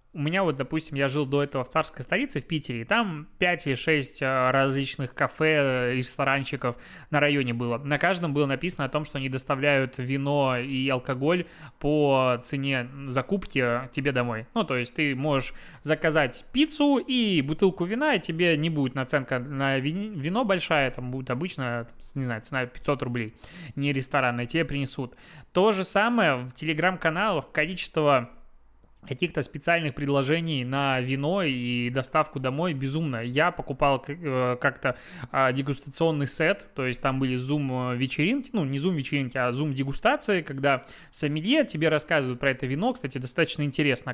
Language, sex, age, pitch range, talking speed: Russian, male, 20-39, 130-160 Hz, 155 wpm